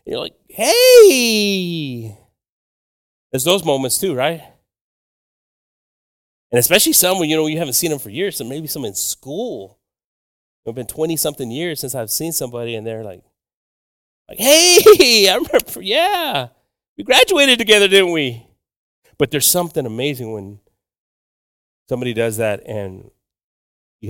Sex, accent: male, American